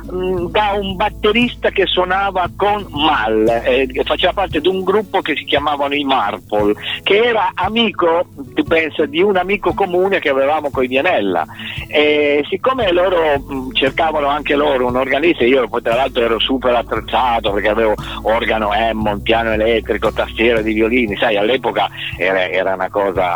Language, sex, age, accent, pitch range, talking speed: Italian, male, 50-69, native, 110-175 Hz, 160 wpm